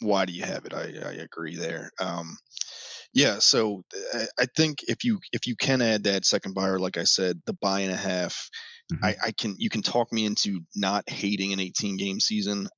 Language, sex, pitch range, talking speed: English, male, 95-115 Hz, 215 wpm